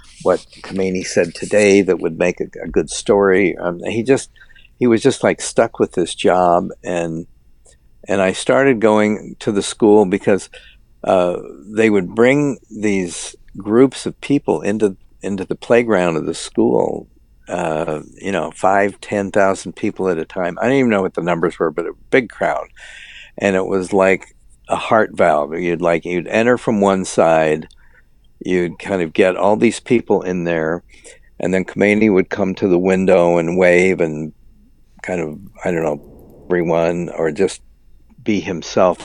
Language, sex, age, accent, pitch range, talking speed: English, male, 60-79, American, 85-105 Hz, 170 wpm